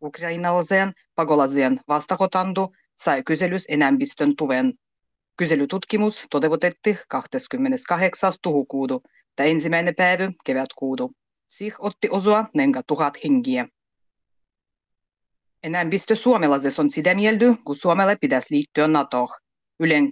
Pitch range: 145-190 Hz